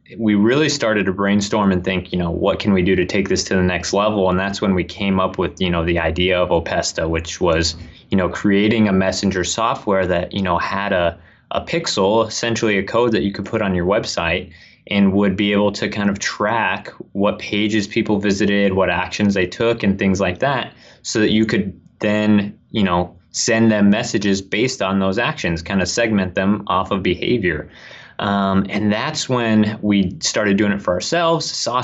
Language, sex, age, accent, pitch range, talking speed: English, male, 20-39, American, 90-105 Hz, 205 wpm